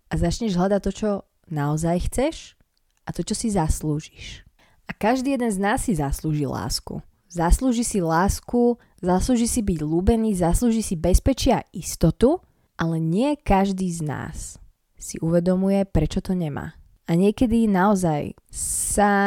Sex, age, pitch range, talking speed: female, 20-39, 180-220 Hz, 140 wpm